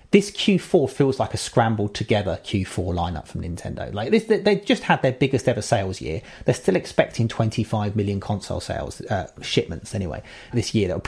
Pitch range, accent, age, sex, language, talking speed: 100-130 Hz, British, 30-49, male, English, 185 wpm